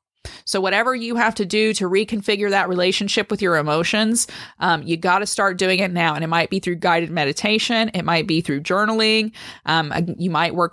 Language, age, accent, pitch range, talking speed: English, 20-39, American, 170-220 Hz, 205 wpm